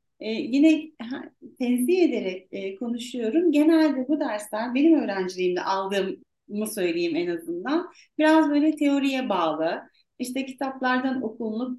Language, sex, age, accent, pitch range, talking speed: Turkish, female, 40-59, native, 210-300 Hz, 115 wpm